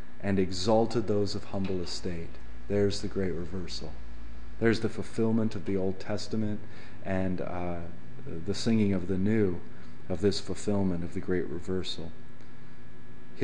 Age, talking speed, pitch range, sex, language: 30-49, 145 wpm, 90-115 Hz, male, English